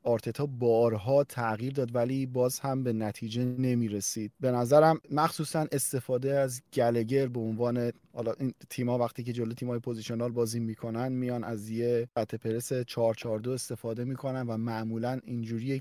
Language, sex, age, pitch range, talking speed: Persian, male, 30-49, 115-130 Hz, 140 wpm